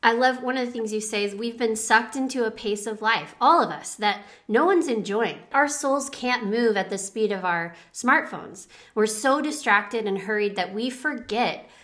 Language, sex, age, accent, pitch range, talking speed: English, female, 30-49, American, 195-245 Hz, 215 wpm